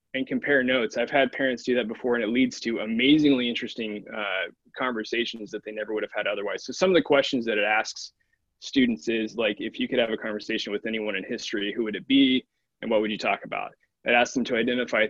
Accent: American